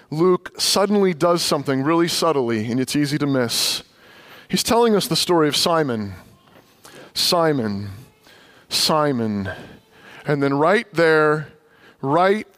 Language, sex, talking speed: English, male, 120 wpm